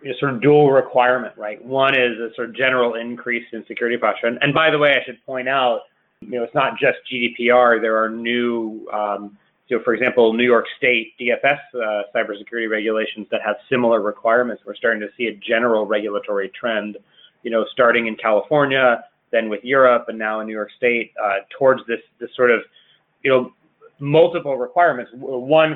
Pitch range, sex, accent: 115-140 Hz, male, American